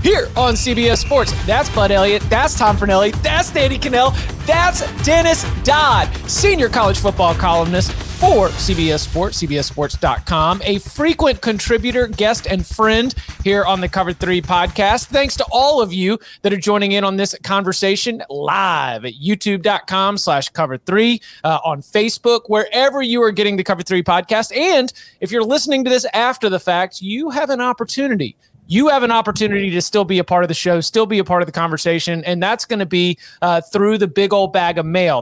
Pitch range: 180-230 Hz